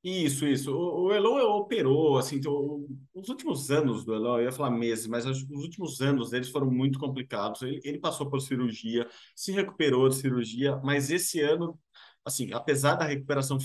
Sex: male